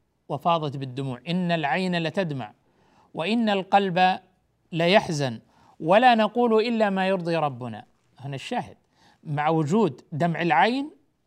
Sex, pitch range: male, 165-225 Hz